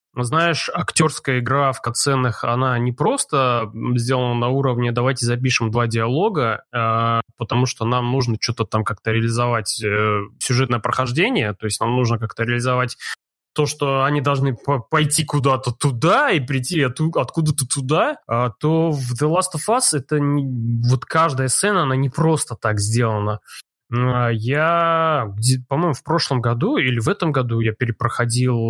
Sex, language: male, Russian